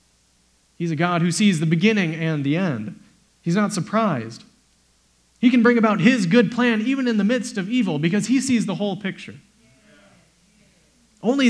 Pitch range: 120-205 Hz